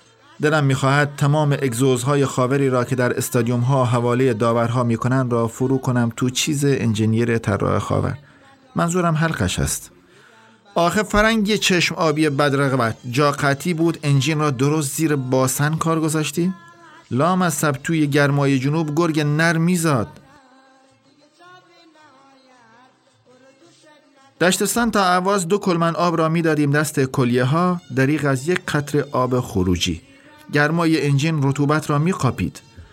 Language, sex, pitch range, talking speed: Persian, male, 125-170 Hz, 130 wpm